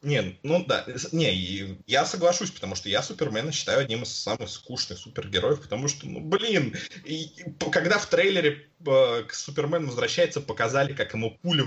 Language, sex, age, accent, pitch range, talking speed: Russian, male, 20-39, native, 120-175 Hz, 165 wpm